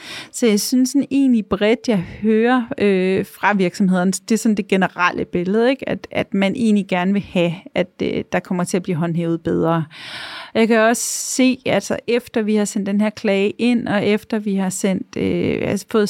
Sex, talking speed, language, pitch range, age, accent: female, 210 wpm, Danish, 200-240 Hz, 30-49, native